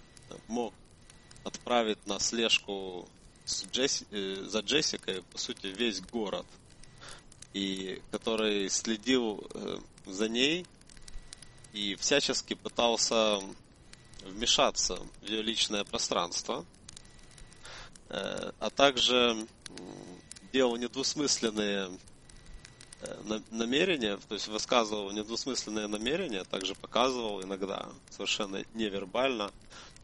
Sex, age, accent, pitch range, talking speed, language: male, 30-49, native, 100-120 Hz, 75 wpm, Russian